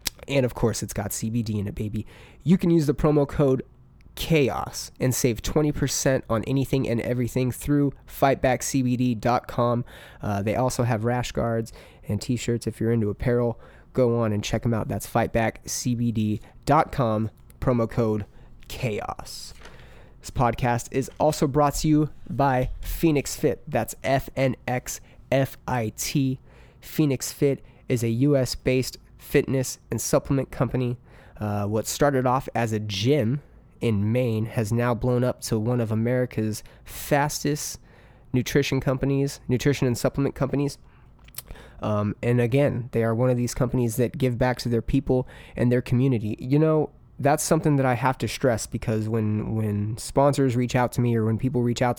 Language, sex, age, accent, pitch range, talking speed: English, male, 20-39, American, 115-135 Hz, 155 wpm